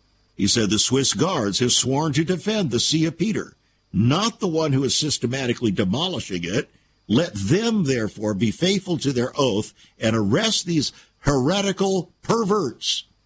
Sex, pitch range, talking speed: male, 110-170 Hz, 155 wpm